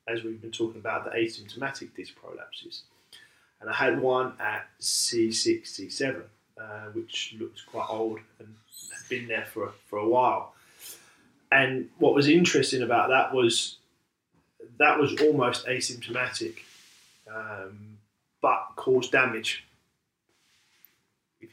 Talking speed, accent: 125 wpm, British